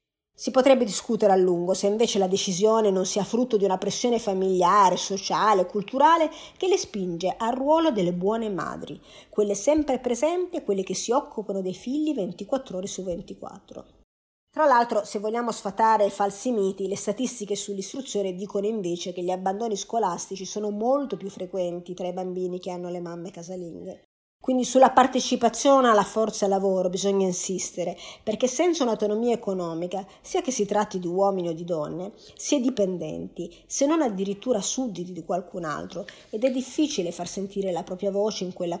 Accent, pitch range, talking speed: native, 185-250 Hz, 170 wpm